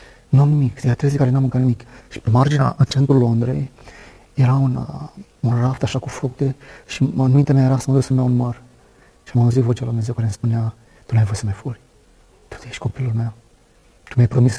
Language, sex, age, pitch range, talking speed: Romanian, male, 30-49, 120-135 Hz, 225 wpm